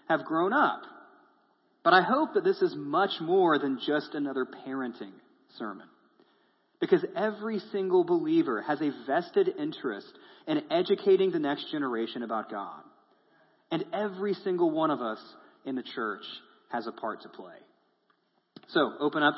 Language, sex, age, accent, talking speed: English, male, 30-49, American, 150 wpm